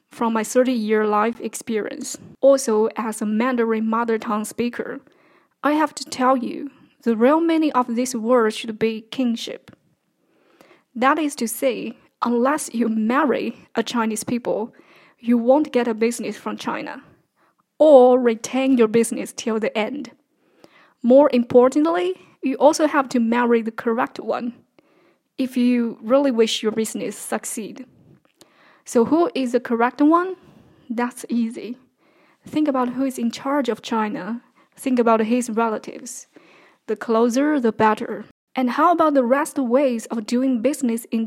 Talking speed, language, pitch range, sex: 150 wpm, English, 230-265 Hz, female